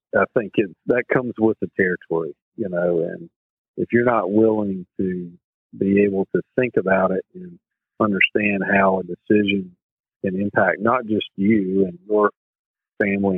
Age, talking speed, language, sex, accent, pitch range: 50-69, 155 wpm, English, male, American, 90-110 Hz